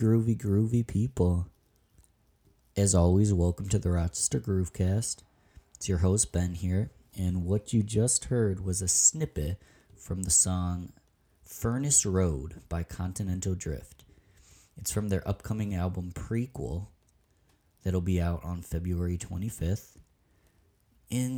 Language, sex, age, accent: English, male, 20-39, American